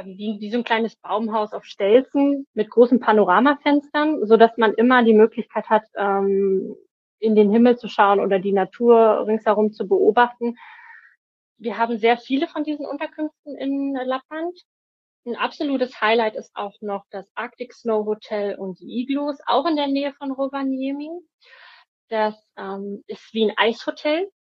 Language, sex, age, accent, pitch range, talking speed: German, female, 20-39, German, 200-270 Hz, 150 wpm